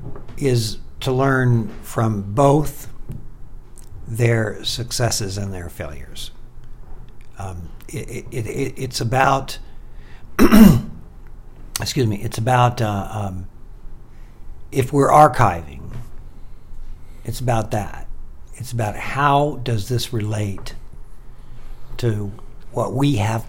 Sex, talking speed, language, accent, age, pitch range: male, 90 wpm, English, American, 60-79, 85-125 Hz